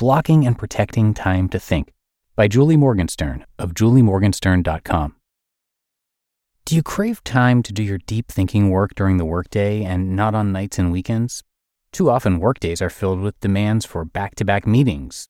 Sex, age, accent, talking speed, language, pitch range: male, 30-49, American, 155 wpm, English, 95-125 Hz